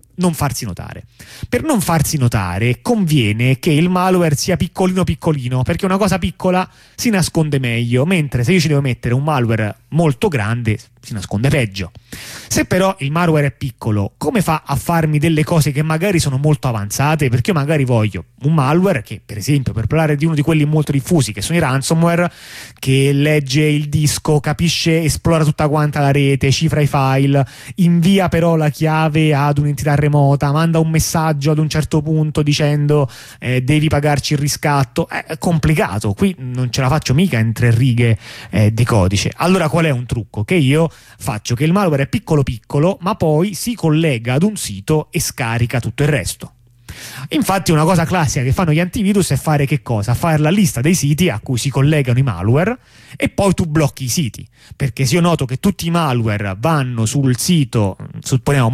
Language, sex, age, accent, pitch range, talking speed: Italian, male, 30-49, native, 125-165 Hz, 190 wpm